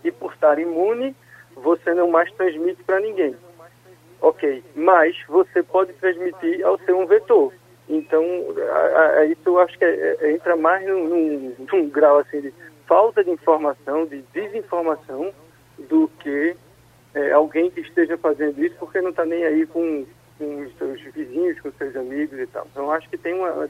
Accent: Brazilian